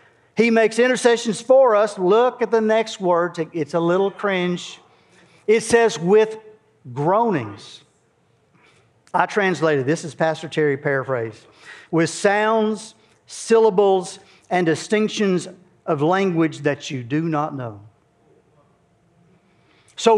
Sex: male